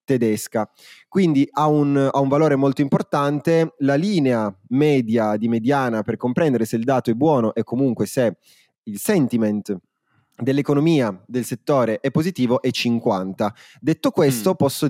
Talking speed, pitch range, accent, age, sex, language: 145 wpm, 115-150 Hz, native, 20-39, male, Italian